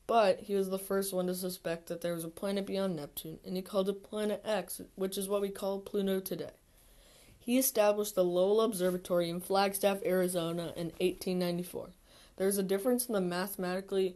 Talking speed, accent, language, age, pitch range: 190 wpm, American, English, 20-39, 175-195 Hz